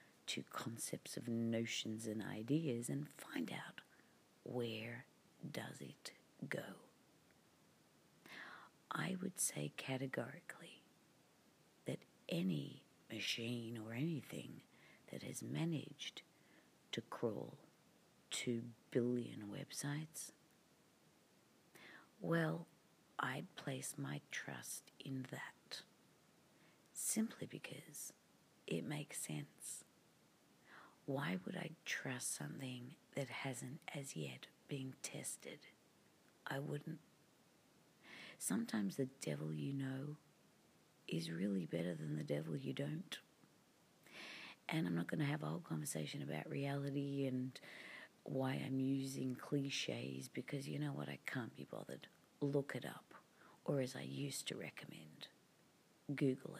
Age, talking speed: 50-69, 110 wpm